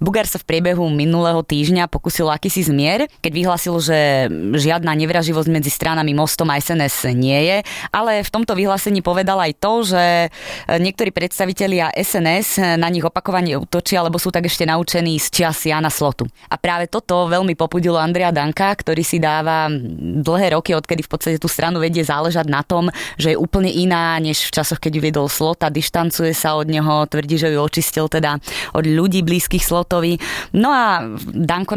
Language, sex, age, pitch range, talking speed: Slovak, female, 20-39, 155-175 Hz, 175 wpm